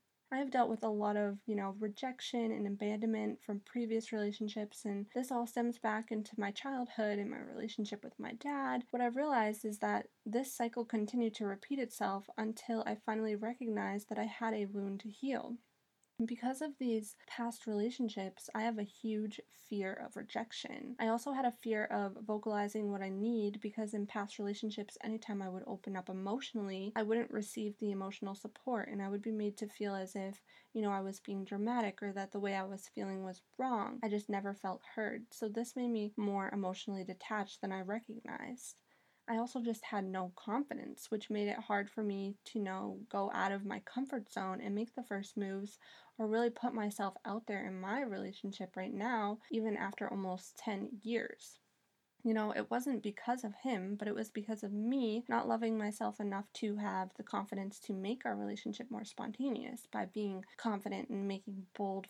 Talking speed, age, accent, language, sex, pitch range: 195 wpm, 10-29, American, English, female, 200-235 Hz